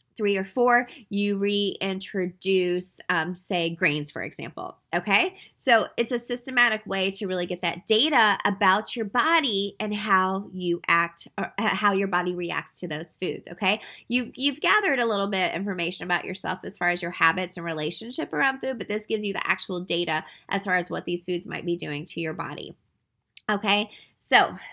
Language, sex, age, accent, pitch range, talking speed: English, female, 20-39, American, 175-230 Hz, 185 wpm